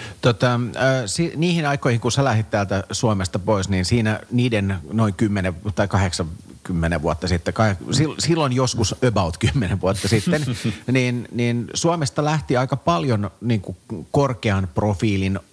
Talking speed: 130 wpm